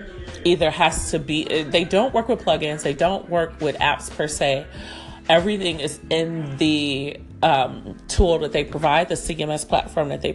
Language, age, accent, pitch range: English, 40-59, American, 145-175 Hz